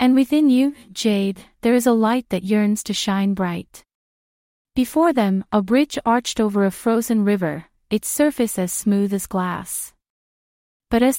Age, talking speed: 30-49, 160 wpm